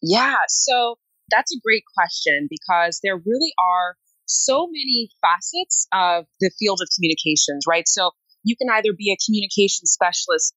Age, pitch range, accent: 20-39, 165-230 Hz, American